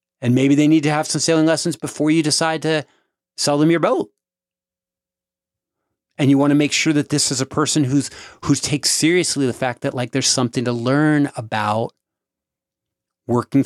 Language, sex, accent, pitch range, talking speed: English, male, American, 120-150 Hz, 185 wpm